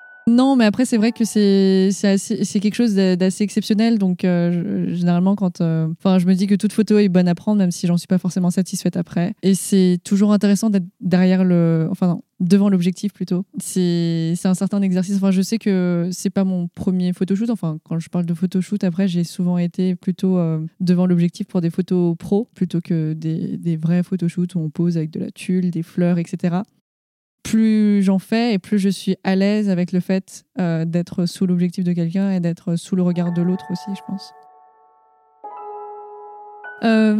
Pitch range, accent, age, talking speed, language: 175-200 Hz, French, 20-39, 210 wpm, French